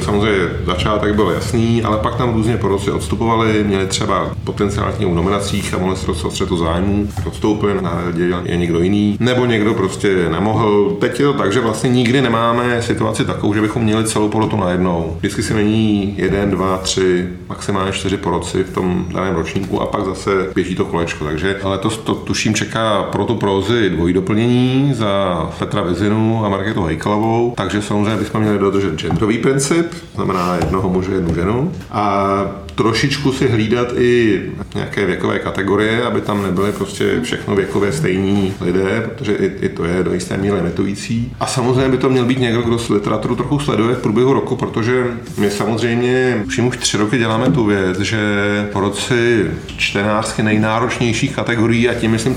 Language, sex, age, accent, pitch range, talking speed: Czech, male, 40-59, native, 100-120 Hz, 175 wpm